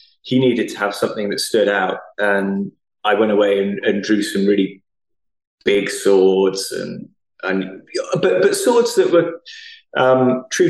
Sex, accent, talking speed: male, British, 155 wpm